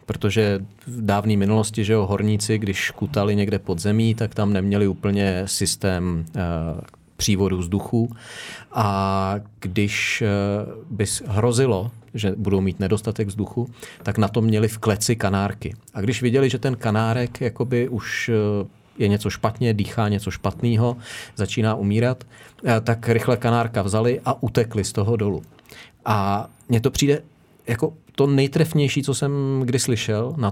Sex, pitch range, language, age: male, 105-120 Hz, Czech, 40-59